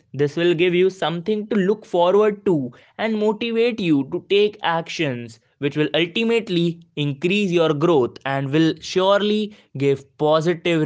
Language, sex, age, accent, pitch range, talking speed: English, male, 20-39, Indian, 140-200 Hz, 145 wpm